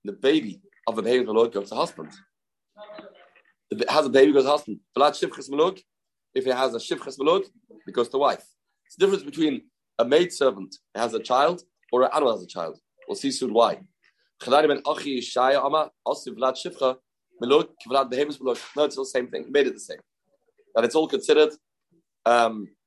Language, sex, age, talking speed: English, male, 30-49, 165 wpm